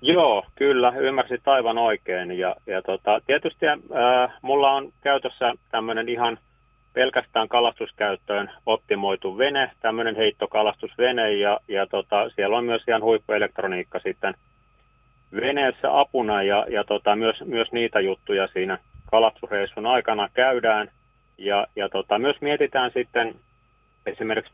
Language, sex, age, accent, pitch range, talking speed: Finnish, male, 30-49, native, 100-120 Hz, 120 wpm